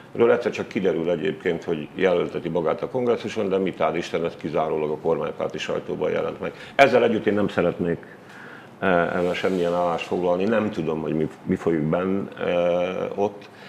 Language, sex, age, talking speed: Hungarian, male, 50-69, 160 wpm